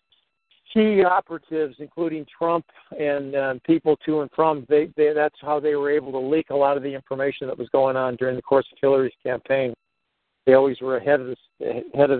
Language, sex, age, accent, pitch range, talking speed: English, male, 50-69, American, 130-155 Hz, 180 wpm